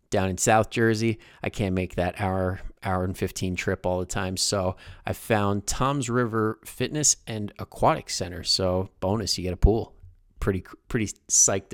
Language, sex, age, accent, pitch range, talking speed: English, male, 30-49, American, 95-115 Hz, 175 wpm